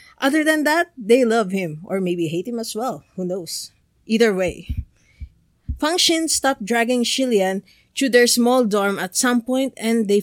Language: English